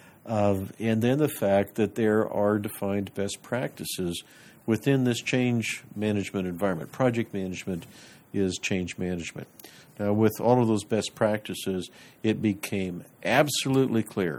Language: English